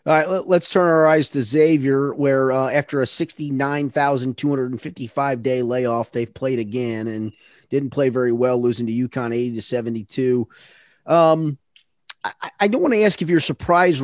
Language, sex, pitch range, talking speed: English, male, 125-155 Hz, 155 wpm